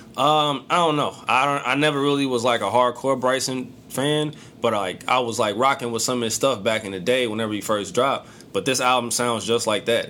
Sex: male